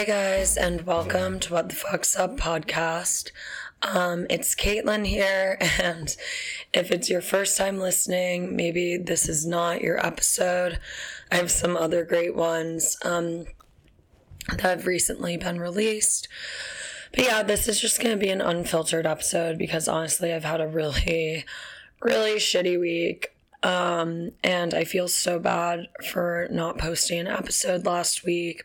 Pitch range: 165-180 Hz